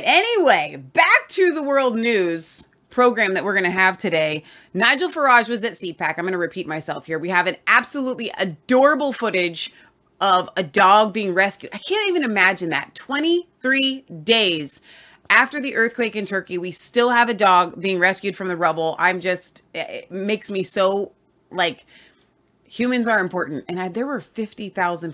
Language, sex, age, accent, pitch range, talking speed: English, female, 30-49, American, 165-235 Hz, 170 wpm